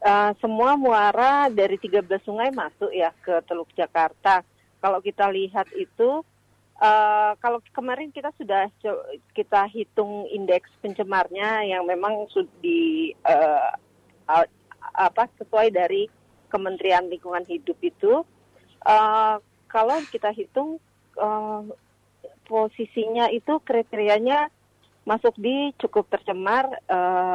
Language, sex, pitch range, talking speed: Indonesian, female, 180-235 Hz, 105 wpm